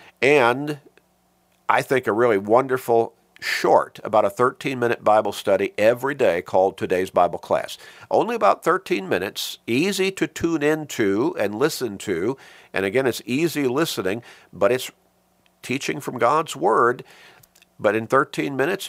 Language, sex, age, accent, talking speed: English, male, 50-69, American, 140 wpm